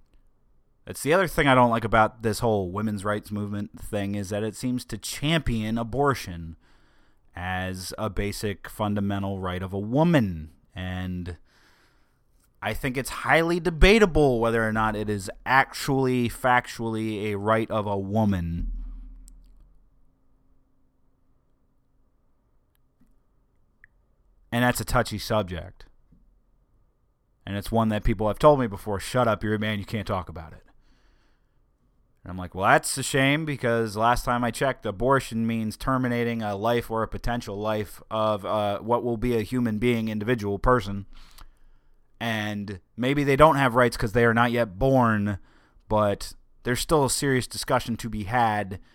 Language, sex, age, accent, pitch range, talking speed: English, male, 30-49, American, 100-125 Hz, 150 wpm